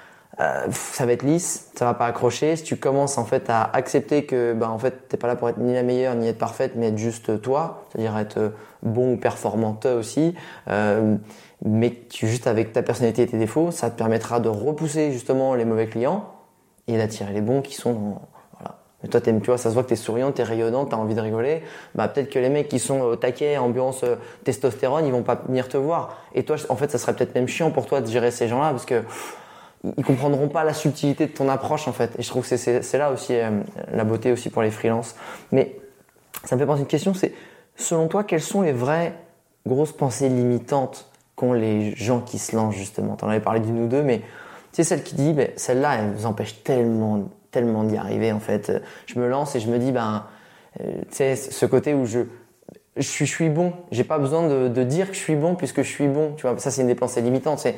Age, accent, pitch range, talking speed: 20-39, French, 115-145 Hz, 245 wpm